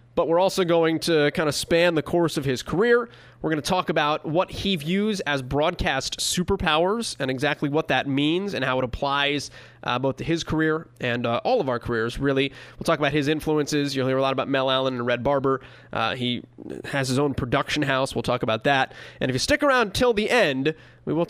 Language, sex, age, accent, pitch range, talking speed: English, male, 20-39, American, 130-170 Hz, 230 wpm